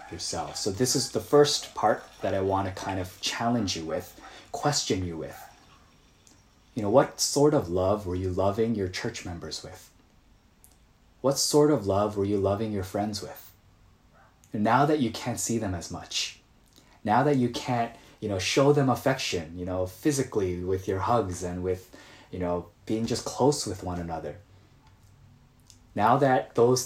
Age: 20-39